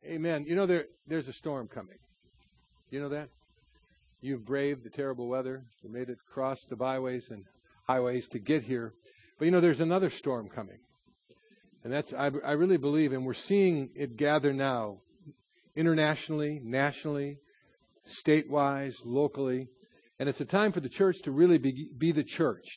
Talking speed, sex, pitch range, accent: 165 wpm, male, 125-150 Hz, American